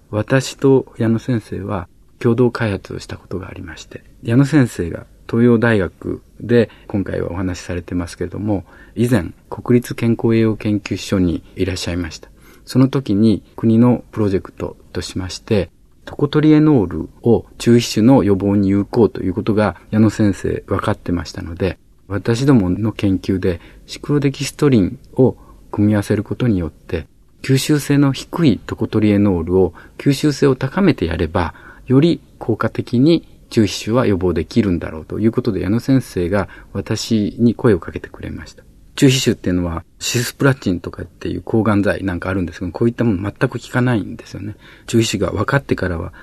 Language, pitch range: Japanese, 95-120 Hz